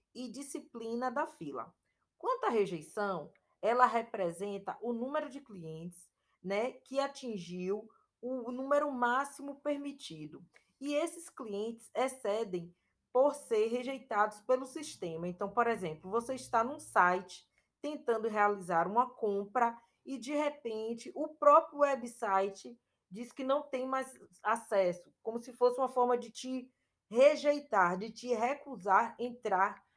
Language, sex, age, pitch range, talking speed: Portuguese, female, 20-39, 190-260 Hz, 130 wpm